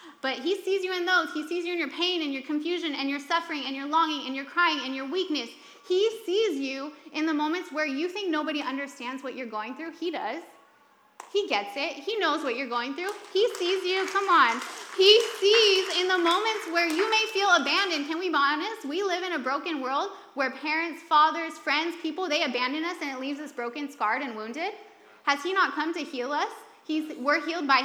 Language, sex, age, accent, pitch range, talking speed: English, female, 20-39, American, 300-385 Hz, 225 wpm